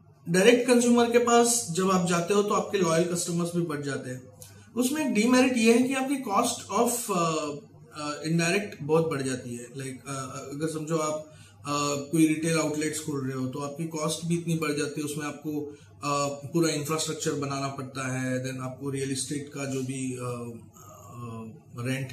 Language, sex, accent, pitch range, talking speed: Hindi, male, native, 130-170 Hz, 180 wpm